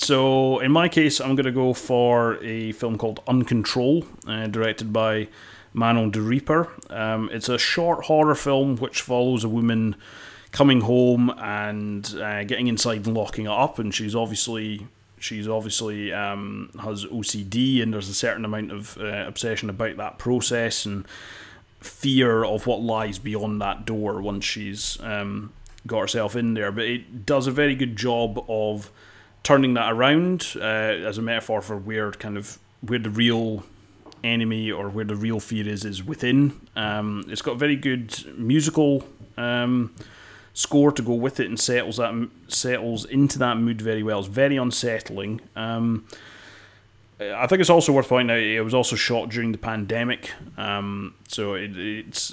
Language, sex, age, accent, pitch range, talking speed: English, male, 30-49, British, 105-125 Hz, 170 wpm